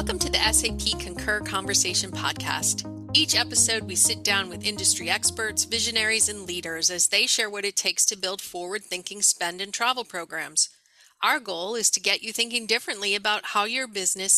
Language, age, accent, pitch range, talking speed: English, 40-59, American, 180-230 Hz, 185 wpm